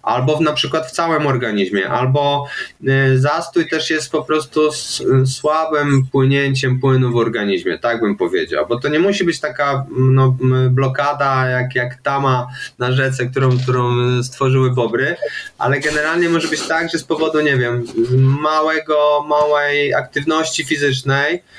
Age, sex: 20-39, male